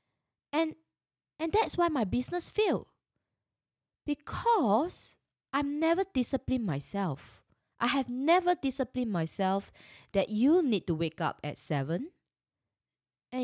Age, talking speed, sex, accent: 20-39, 115 wpm, female, Malaysian